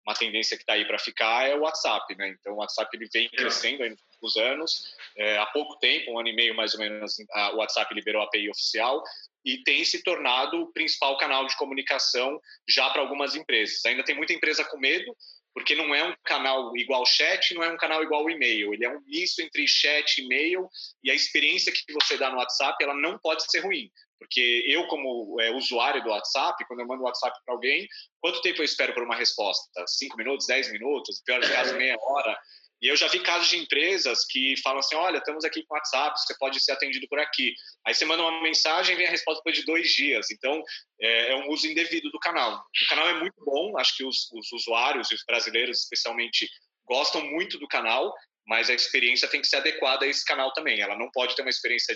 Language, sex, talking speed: Portuguese, male, 225 wpm